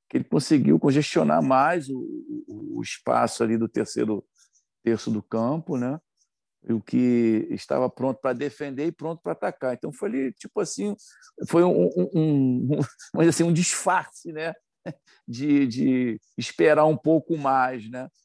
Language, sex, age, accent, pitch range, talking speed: Portuguese, male, 50-69, Brazilian, 125-165 Hz, 160 wpm